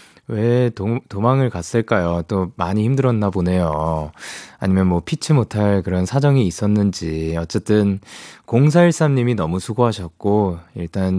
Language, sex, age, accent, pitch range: Korean, male, 20-39, native, 95-140 Hz